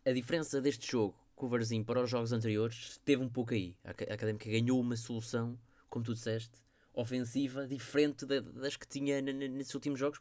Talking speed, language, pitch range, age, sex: 175 wpm, Portuguese, 105-125 Hz, 20-39, male